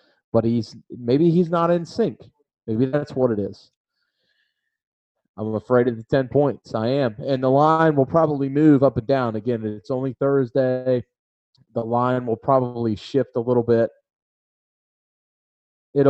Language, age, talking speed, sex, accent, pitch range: English, 30-49, 155 wpm, male, American, 115-140 Hz